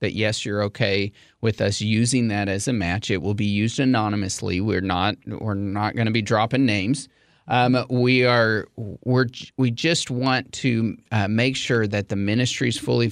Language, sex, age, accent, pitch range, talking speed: English, male, 30-49, American, 100-120 Hz, 190 wpm